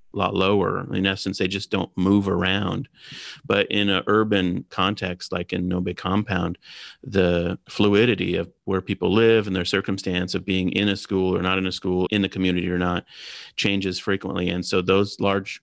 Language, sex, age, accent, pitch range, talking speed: English, male, 30-49, American, 90-100 Hz, 190 wpm